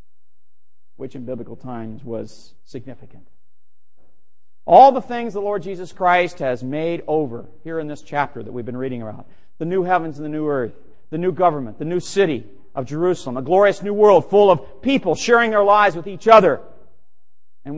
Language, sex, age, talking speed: English, male, 50-69, 180 wpm